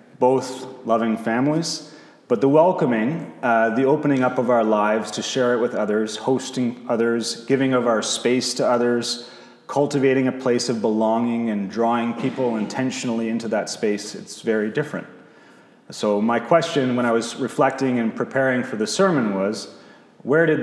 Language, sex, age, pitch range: English, male, 30-49, 110-130 Hz